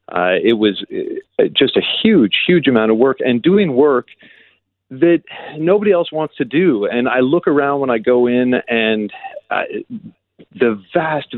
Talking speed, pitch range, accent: 165 wpm, 110-140 Hz, American